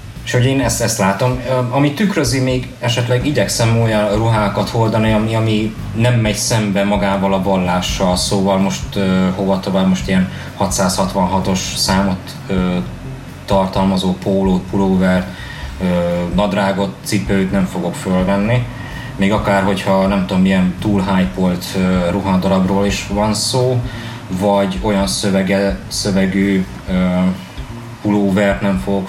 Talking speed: 125 wpm